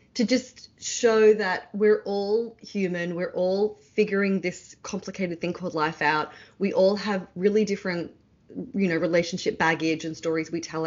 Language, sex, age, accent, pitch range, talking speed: English, female, 30-49, Australian, 155-195 Hz, 160 wpm